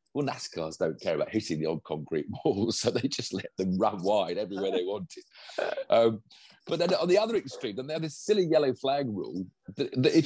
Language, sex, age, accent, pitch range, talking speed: English, male, 50-69, British, 110-160 Hz, 220 wpm